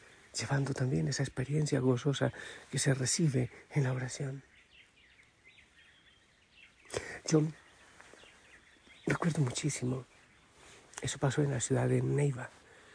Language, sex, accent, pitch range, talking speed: Spanish, male, Spanish, 125-145 Hz, 95 wpm